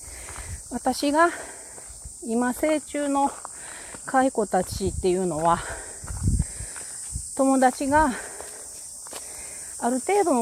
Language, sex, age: Japanese, female, 40-59